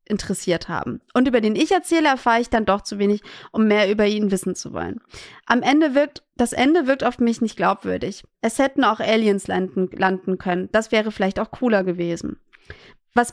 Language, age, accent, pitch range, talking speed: German, 20-39, German, 210-265 Hz, 200 wpm